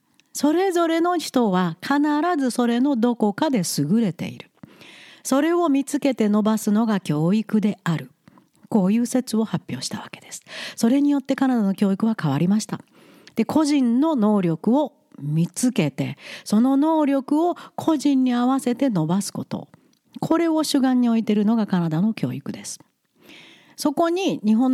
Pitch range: 185-280 Hz